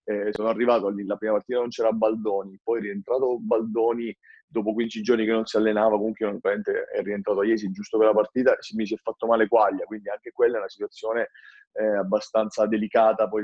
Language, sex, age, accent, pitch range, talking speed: Italian, male, 30-49, native, 110-140 Hz, 195 wpm